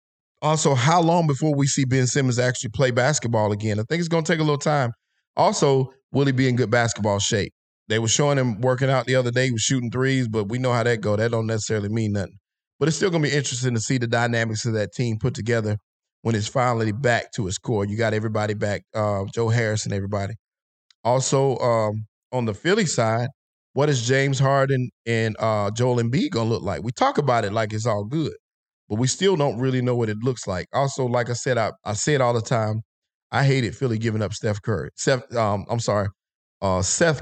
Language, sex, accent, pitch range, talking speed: English, male, American, 110-130 Hz, 235 wpm